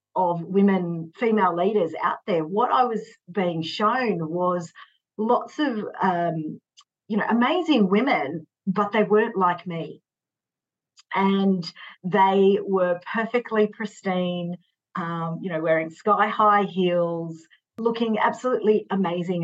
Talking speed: 115 wpm